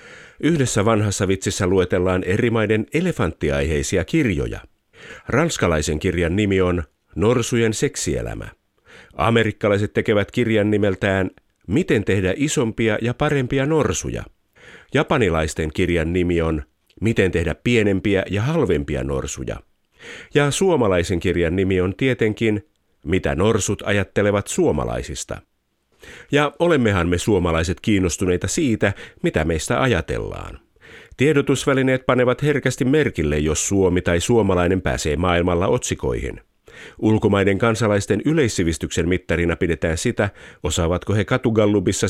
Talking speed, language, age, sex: 105 wpm, Finnish, 50-69, male